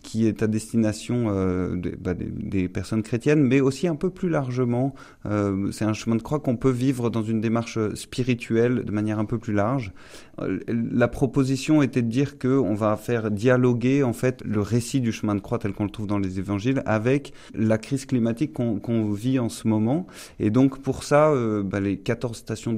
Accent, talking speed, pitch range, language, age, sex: French, 210 wpm, 100-120 Hz, French, 30-49, male